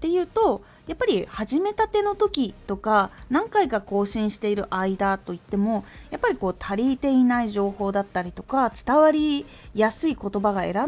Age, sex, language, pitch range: 20-39, female, Japanese, 190-300 Hz